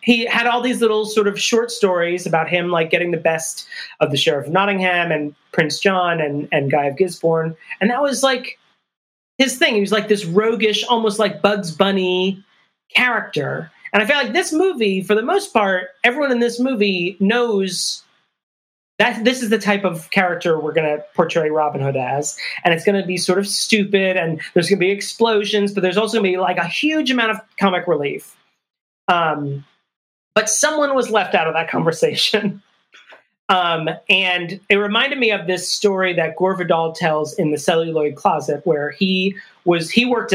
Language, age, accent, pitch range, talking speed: English, 30-49, American, 160-215 Hz, 195 wpm